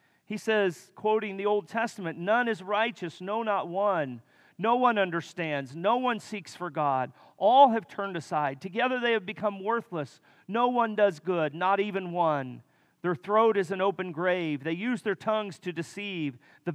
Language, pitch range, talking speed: English, 155-205 Hz, 175 wpm